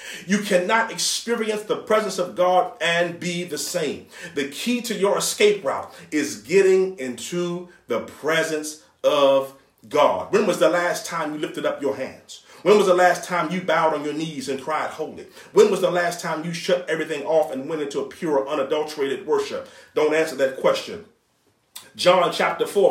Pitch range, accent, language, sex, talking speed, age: 165-225 Hz, American, English, male, 185 wpm, 40-59